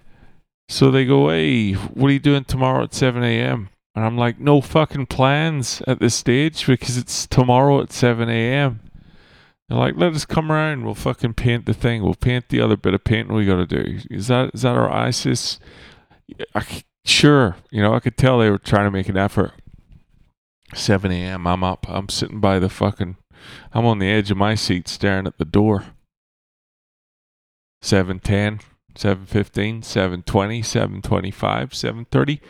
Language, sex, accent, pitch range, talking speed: English, male, American, 95-130 Hz, 175 wpm